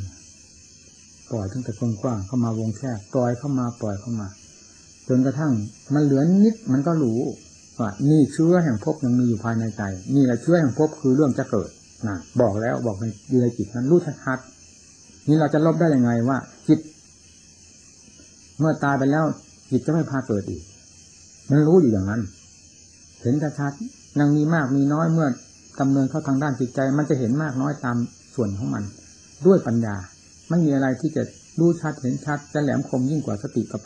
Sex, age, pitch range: male, 60-79, 100-145 Hz